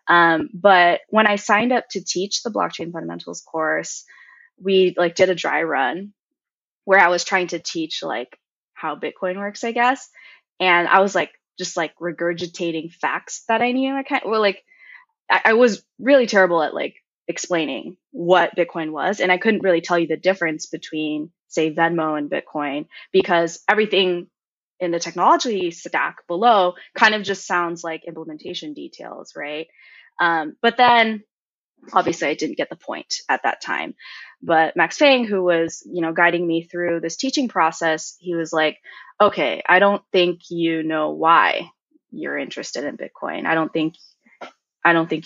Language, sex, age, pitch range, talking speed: English, female, 20-39, 165-215 Hz, 170 wpm